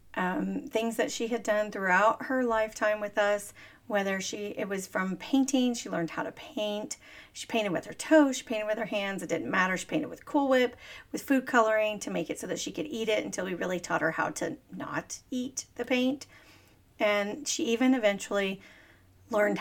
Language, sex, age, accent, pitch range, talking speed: English, female, 40-59, American, 185-255 Hz, 210 wpm